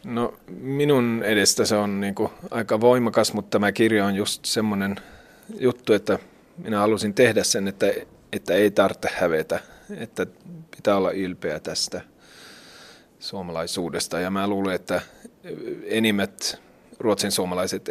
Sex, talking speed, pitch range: male, 125 wpm, 100-120 Hz